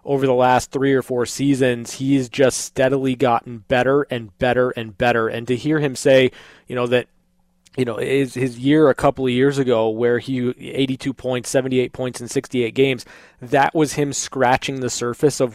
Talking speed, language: 195 wpm, English